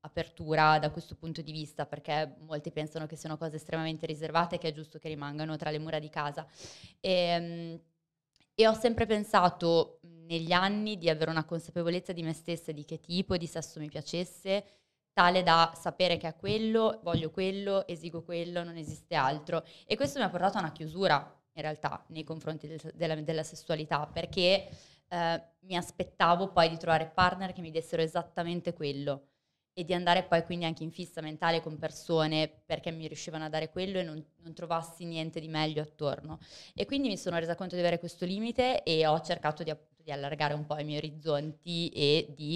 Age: 20-39